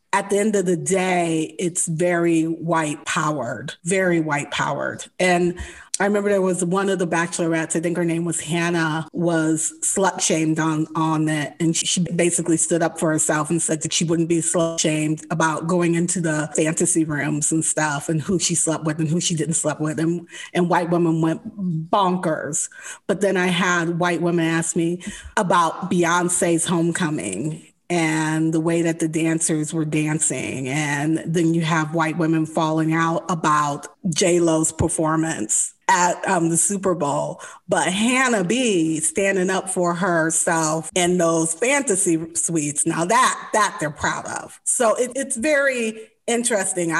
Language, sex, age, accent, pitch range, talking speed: English, female, 30-49, American, 160-185 Hz, 160 wpm